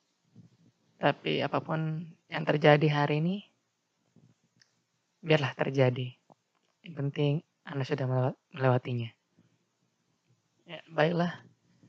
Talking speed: 75 wpm